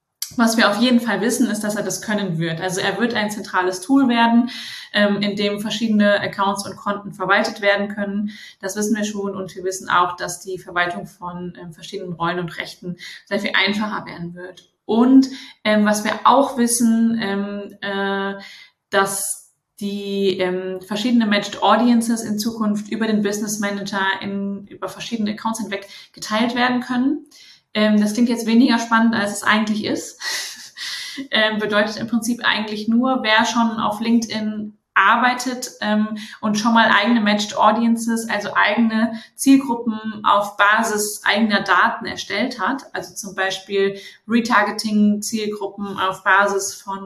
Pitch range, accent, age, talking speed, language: 195-225 Hz, German, 20-39, 155 wpm, German